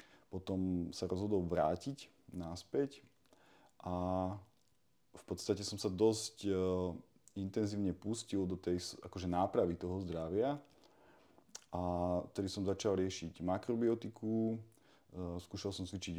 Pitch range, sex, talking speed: 90-100 Hz, male, 110 wpm